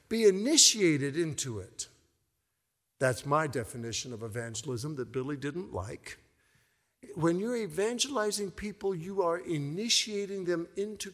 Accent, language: American, English